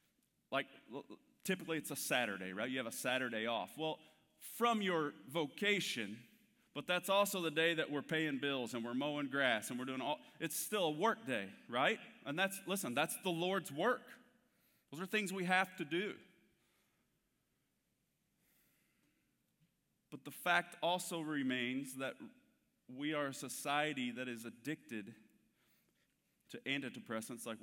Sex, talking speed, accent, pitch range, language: male, 150 wpm, American, 135-175 Hz, English